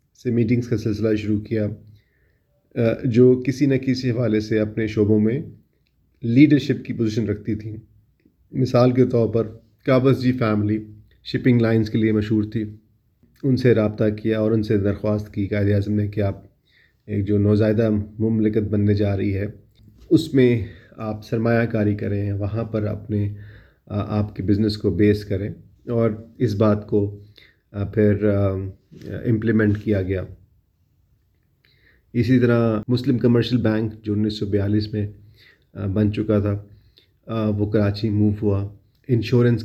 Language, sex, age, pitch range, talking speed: Urdu, male, 30-49, 105-120 Hz, 145 wpm